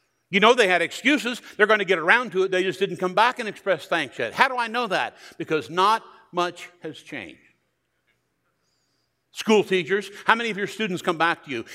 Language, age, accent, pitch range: English, 60-79, American, 150-220 Hz